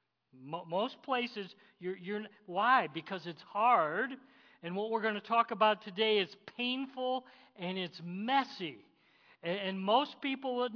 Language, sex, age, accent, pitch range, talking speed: English, male, 50-69, American, 170-225 Hz, 145 wpm